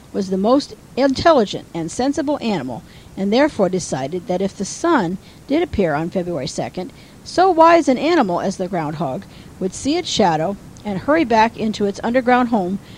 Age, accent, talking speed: 50-69, American, 170 wpm